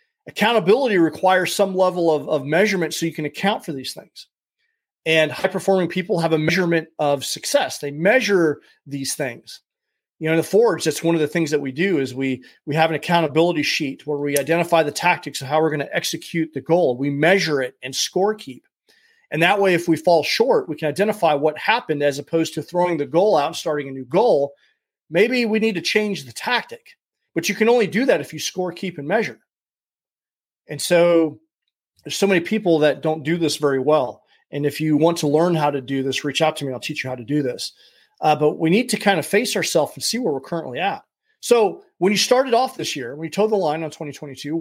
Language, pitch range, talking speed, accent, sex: English, 155-205 Hz, 230 wpm, American, male